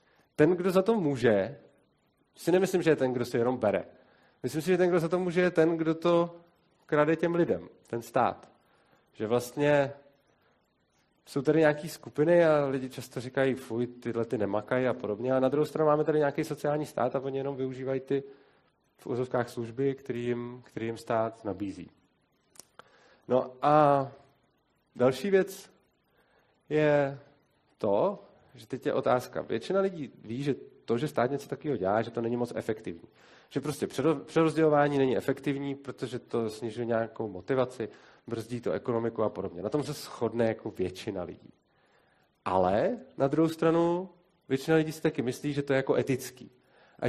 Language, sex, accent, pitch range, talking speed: Czech, male, native, 125-155 Hz, 165 wpm